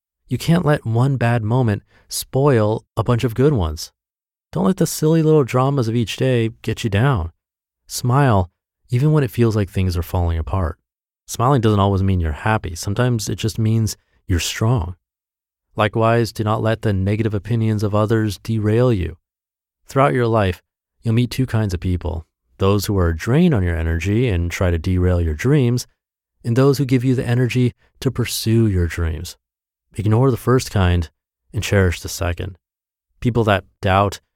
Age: 30-49